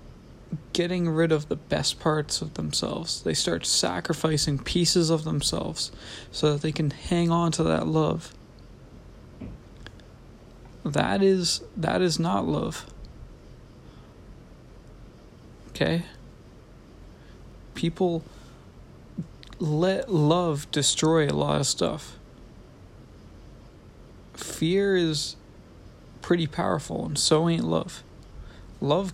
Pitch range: 135-170 Hz